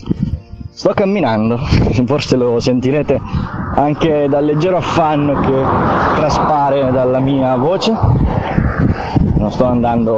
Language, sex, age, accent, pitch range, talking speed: Italian, male, 30-49, native, 115-140 Hz, 100 wpm